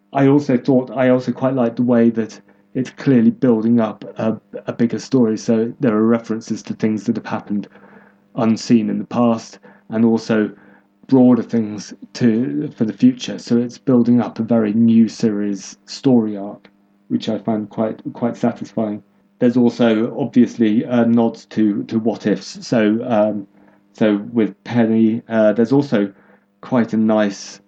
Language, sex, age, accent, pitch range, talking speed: English, male, 30-49, British, 105-125 Hz, 165 wpm